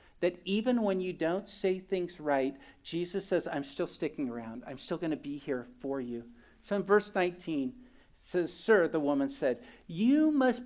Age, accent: 50-69, American